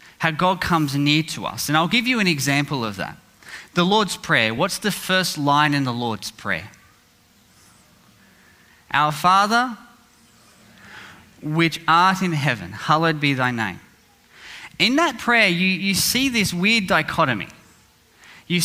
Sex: male